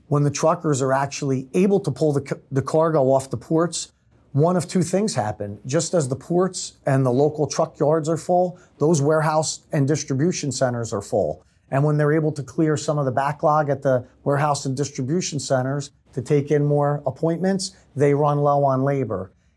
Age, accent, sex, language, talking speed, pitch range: 40-59, American, male, English, 195 wpm, 125-150 Hz